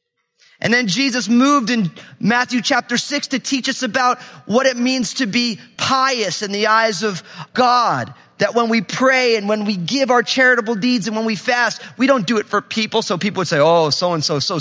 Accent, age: American, 30-49